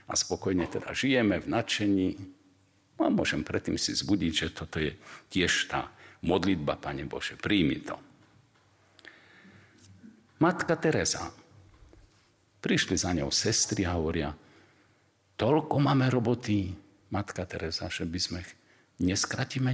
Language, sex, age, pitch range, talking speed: Slovak, male, 50-69, 80-110 Hz, 120 wpm